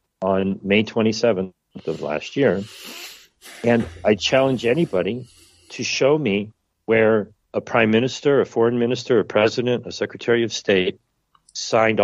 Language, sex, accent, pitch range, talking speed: English, male, American, 95-120 Hz, 135 wpm